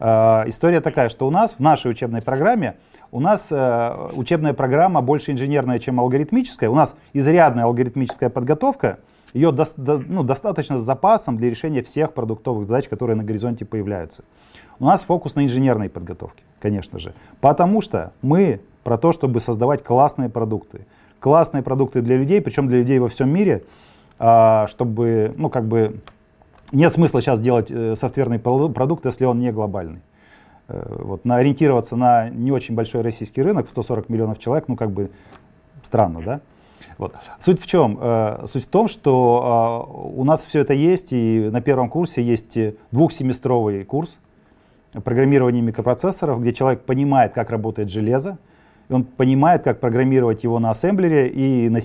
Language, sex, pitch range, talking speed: Russian, male, 115-145 Hz, 155 wpm